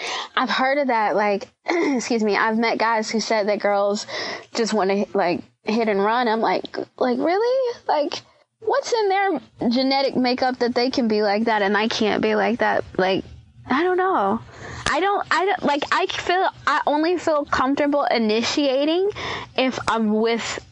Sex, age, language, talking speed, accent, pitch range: female, 20-39, English, 180 wpm, American, 200-275 Hz